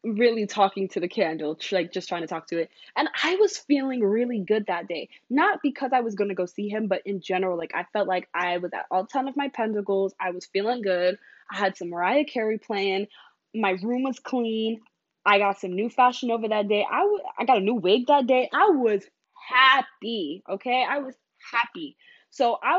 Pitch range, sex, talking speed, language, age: 195-270 Hz, female, 220 wpm, English, 20-39